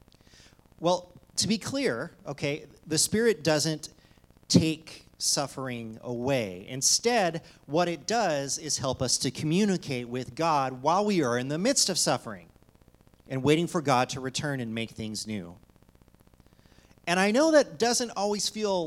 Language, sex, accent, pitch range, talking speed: English, male, American, 125-185 Hz, 150 wpm